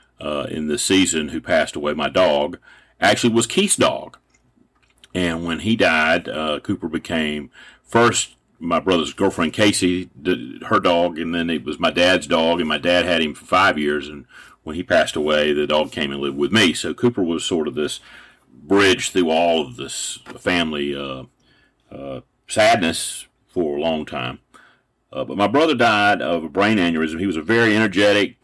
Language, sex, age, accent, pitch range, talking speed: English, male, 40-59, American, 80-115 Hz, 185 wpm